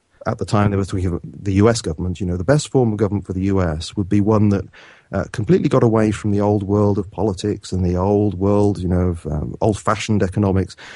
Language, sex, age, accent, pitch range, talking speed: English, male, 30-49, British, 95-115 Hz, 240 wpm